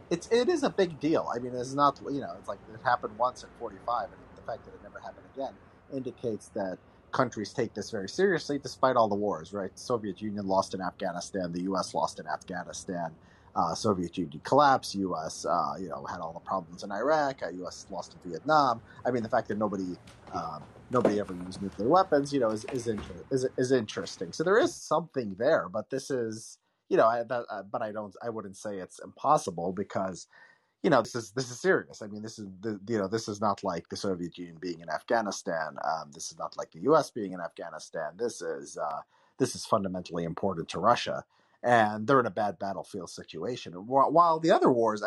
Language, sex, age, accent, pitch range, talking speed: English, male, 30-49, American, 95-135 Hz, 215 wpm